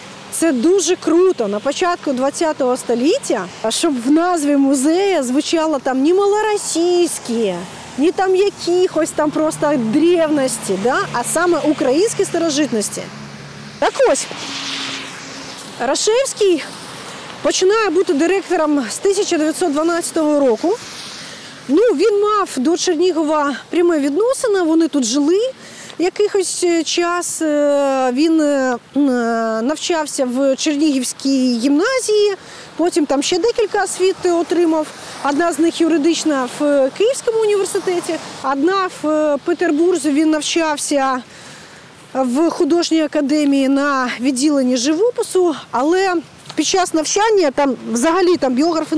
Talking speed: 105 wpm